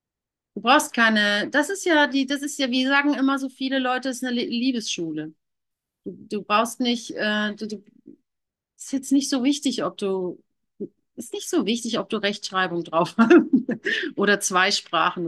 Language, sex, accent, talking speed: German, female, German, 175 wpm